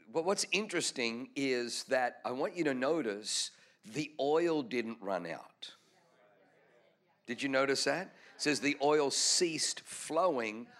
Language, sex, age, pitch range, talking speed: English, male, 50-69, 115-145 Hz, 140 wpm